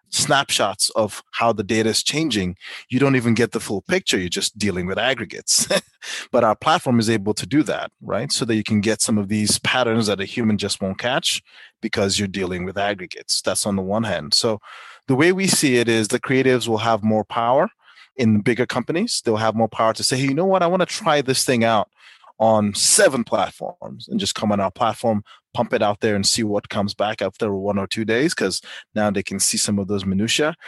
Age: 30-49